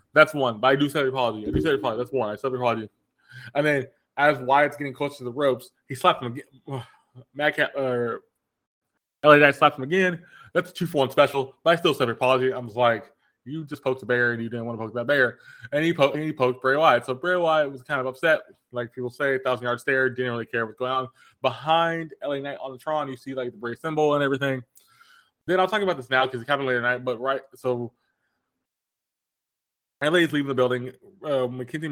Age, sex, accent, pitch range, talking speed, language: 20-39, male, American, 125-145 Hz, 235 wpm, English